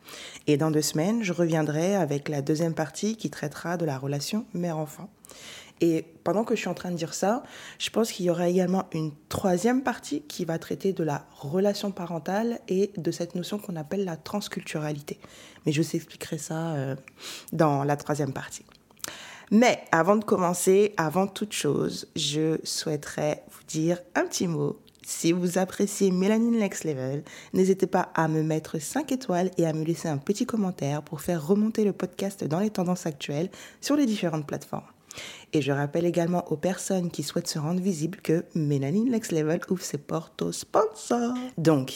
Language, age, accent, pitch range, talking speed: French, 20-39, French, 160-200 Hz, 180 wpm